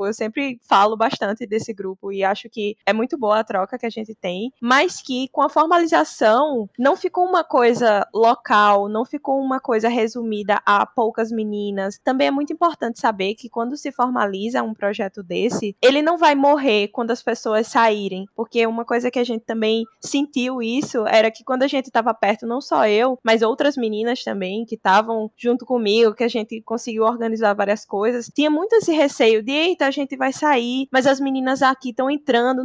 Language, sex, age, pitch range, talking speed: Portuguese, female, 10-29, 215-265 Hz, 195 wpm